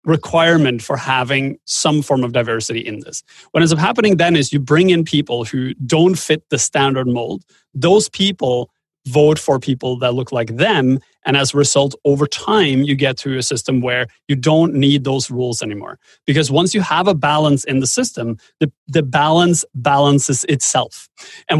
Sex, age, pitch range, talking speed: male, 30-49, 130-165 Hz, 185 wpm